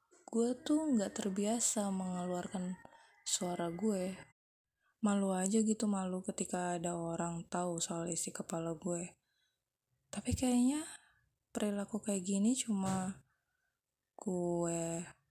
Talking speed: 100 wpm